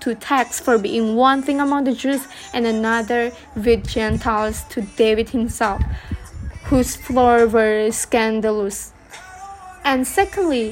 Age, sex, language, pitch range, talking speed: 20-39, female, English, 235-280 Hz, 125 wpm